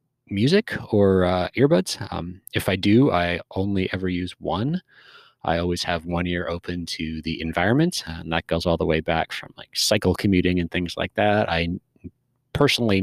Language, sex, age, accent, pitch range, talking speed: English, male, 30-49, American, 85-120 Hz, 180 wpm